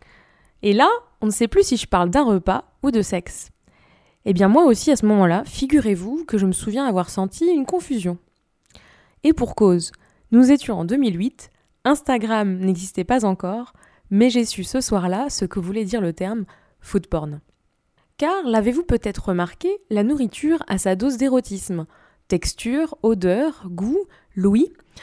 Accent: French